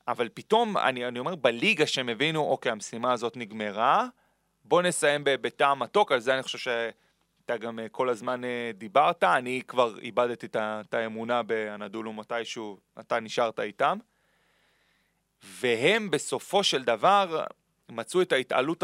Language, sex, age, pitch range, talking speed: Hebrew, male, 30-49, 120-195 Hz, 135 wpm